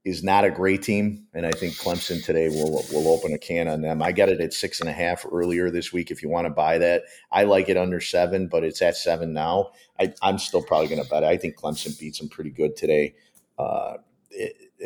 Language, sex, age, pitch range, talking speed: English, male, 40-59, 80-95 Hz, 245 wpm